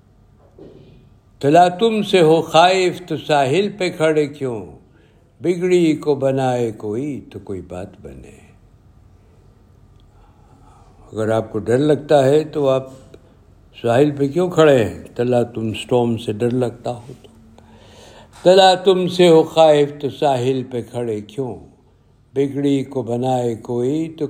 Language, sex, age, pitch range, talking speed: Urdu, male, 60-79, 110-150 Hz, 135 wpm